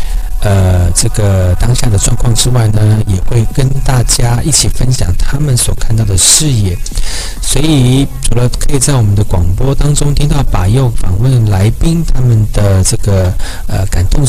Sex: male